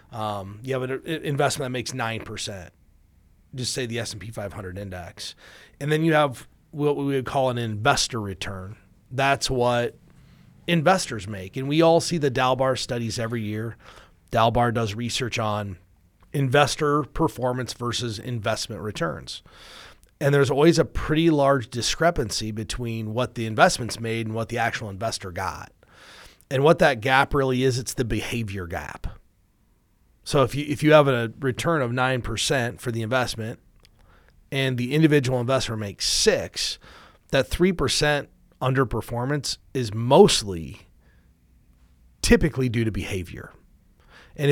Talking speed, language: 140 wpm, English